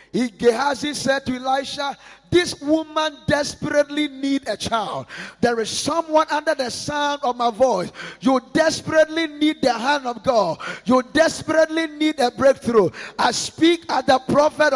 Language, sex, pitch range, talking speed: English, male, 260-305 Hz, 150 wpm